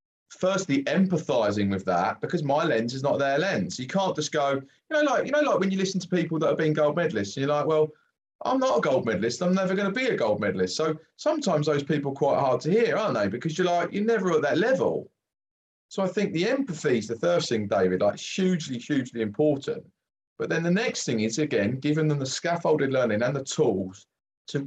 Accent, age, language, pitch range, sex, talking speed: British, 30-49, English, 110-155 Hz, male, 230 wpm